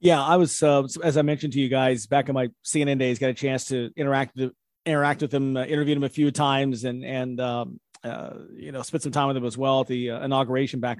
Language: English